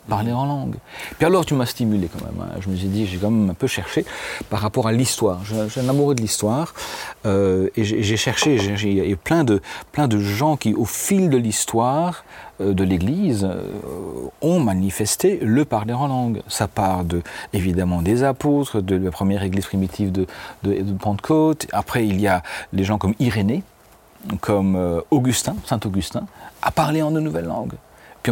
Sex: male